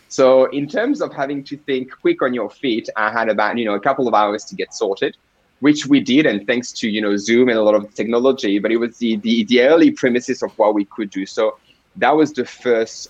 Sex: male